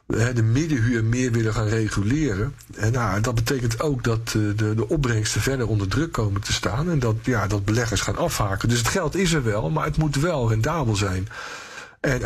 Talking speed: 185 wpm